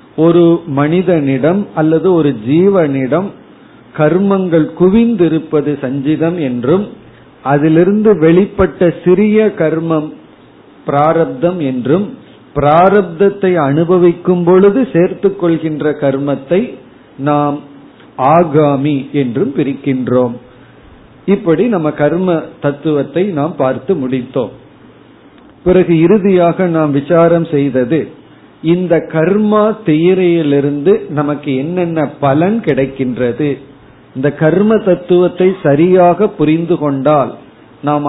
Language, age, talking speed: Tamil, 40-59, 80 wpm